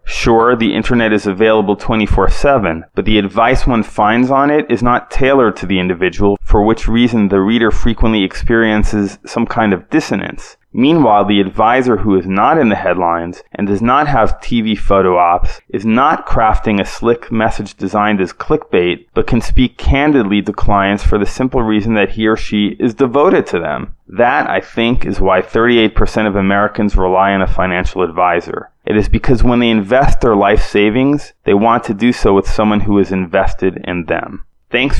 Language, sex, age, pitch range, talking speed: English, male, 30-49, 95-115 Hz, 185 wpm